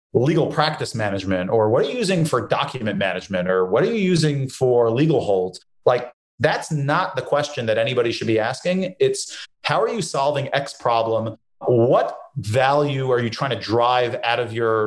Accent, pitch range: American, 115-145 Hz